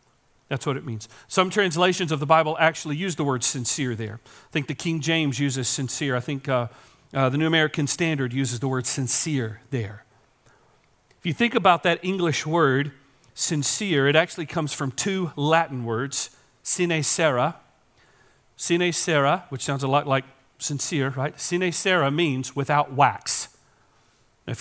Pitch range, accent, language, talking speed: 125-155 Hz, American, English, 165 wpm